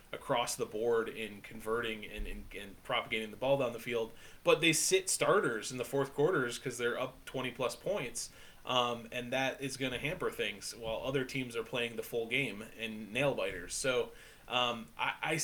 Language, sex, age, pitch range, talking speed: English, male, 20-39, 115-135 Hz, 200 wpm